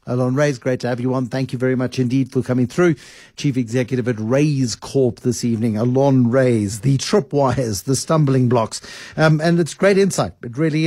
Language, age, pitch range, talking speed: English, 60-79, 125-155 Hz, 200 wpm